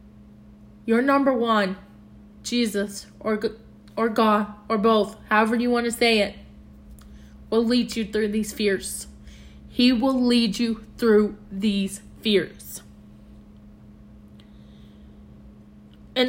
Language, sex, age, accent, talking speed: English, female, 20-39, American, 105 wpm